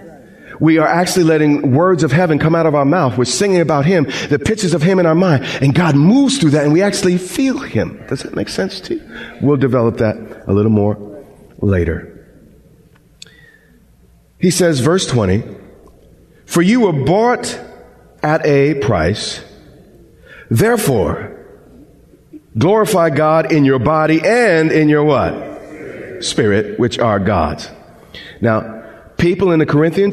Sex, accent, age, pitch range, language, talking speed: male, American, 40-59, 115-170 Hz, English, 150 wpm